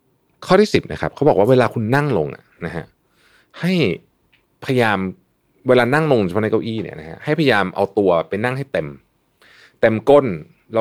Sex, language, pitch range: male, Thai, 90-130 Hz